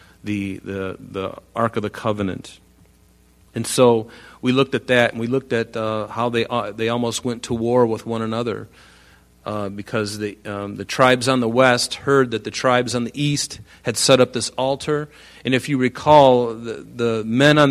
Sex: male